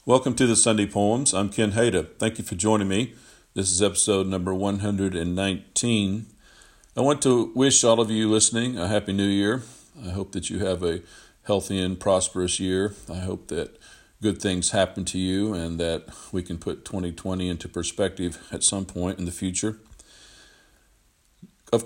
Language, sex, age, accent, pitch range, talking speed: English, male, 50-69, American, 85-100 Hz, 175 wpm